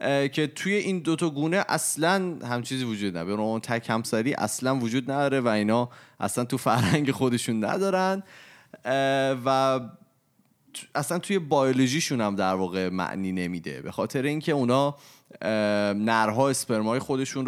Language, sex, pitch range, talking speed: Persian, male, 105-140 Hz, 140 wpm